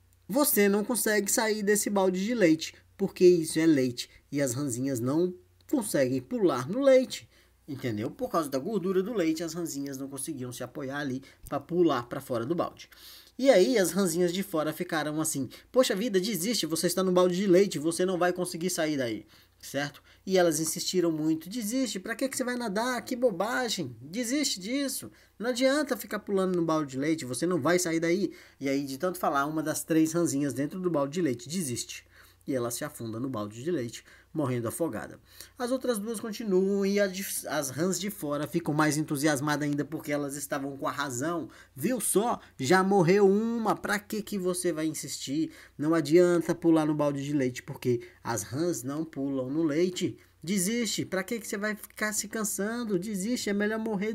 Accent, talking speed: Brazilian, 190 wpm